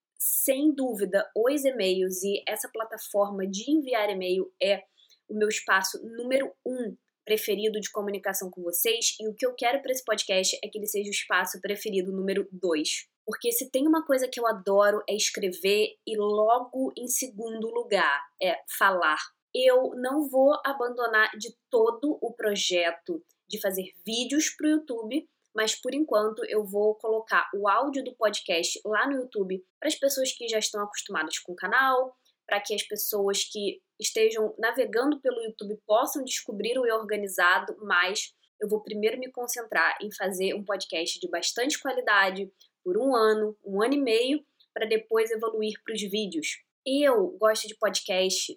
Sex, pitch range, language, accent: female, 200-255 Hz, Portuguese, Brazilian